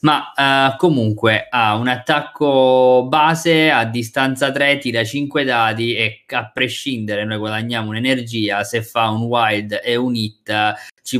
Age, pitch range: 20-39, 105-130 Hz